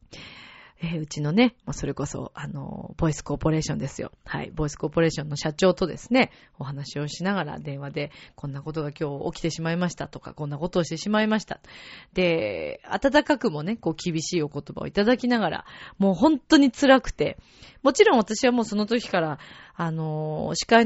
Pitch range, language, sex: 155-230 Hz, Japanese, female